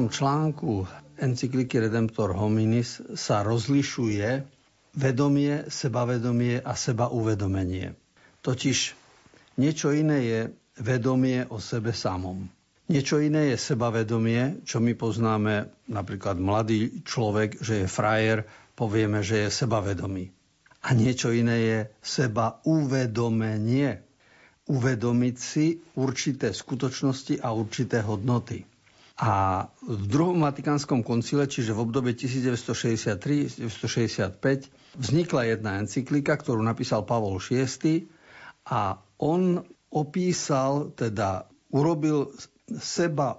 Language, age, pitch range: Slovak, 50-69, 110-140 Hz